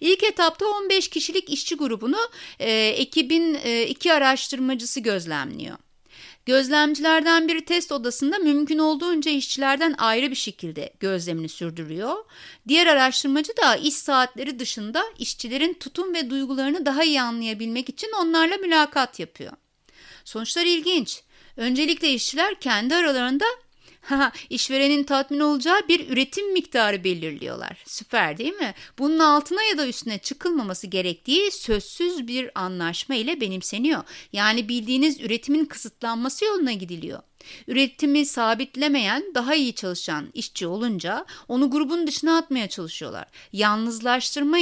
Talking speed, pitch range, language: 120 wpm, 230-320 Hz, Turkish